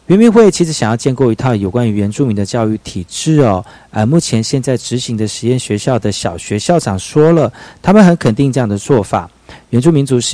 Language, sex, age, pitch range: Chinese, male, 40-59, 105-145 Hz